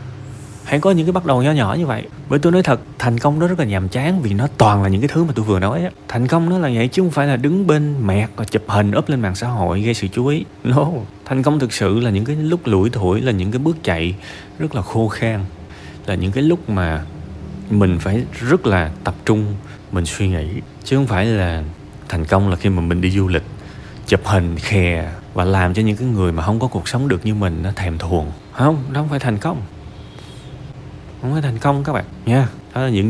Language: Vietnamese